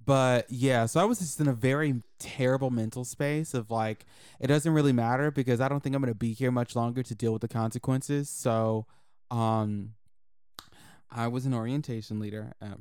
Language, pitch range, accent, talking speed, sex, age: English, 105-130 Hz, American, 190 wpm, male, 20-39